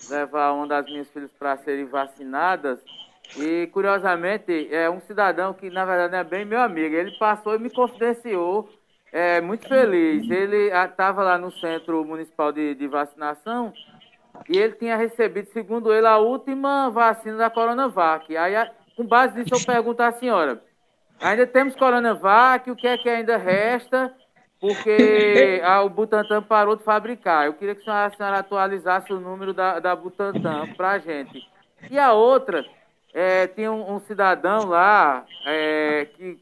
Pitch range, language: 175-230 Hz, Portuguese